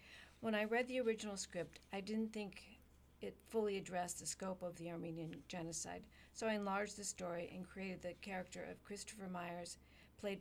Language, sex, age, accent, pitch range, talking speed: English, female, 50-69, American, 170-205 Hz, 180 wpm